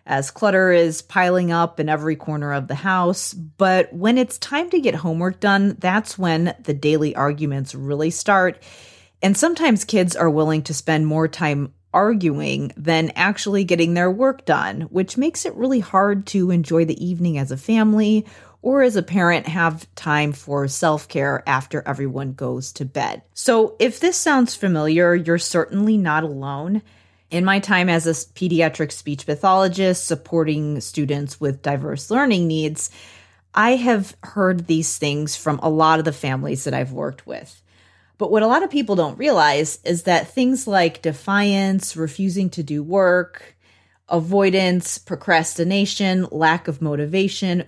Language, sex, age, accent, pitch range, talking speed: English, female, 30-49, American, 155-195 Hz, 160 wpm